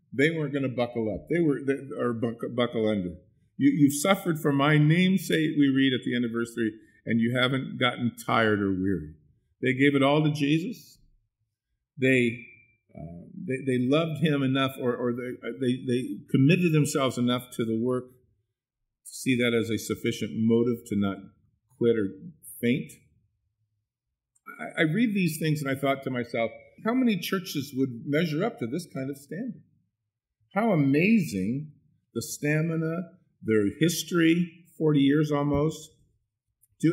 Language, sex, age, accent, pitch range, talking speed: English, male, 50-69, American, 115-155 Hz, 165 wpm